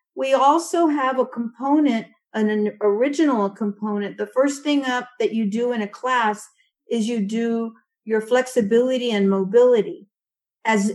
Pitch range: 220-275 Hz